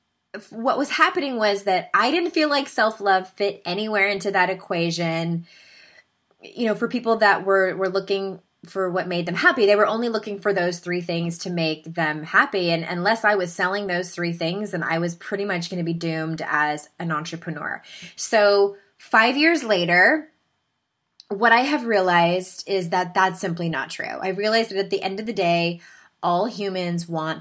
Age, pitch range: 20-39, 175-230 Hz